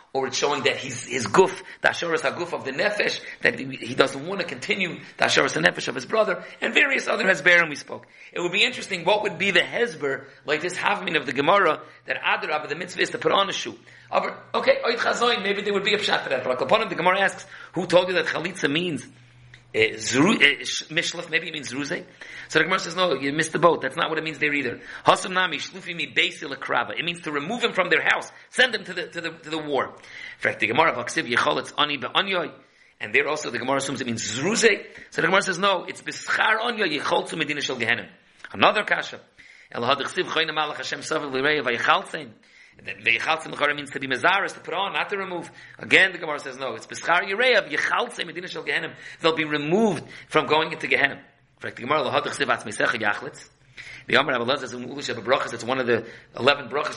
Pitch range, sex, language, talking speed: 135-185 Hz, male, English, 225 wpm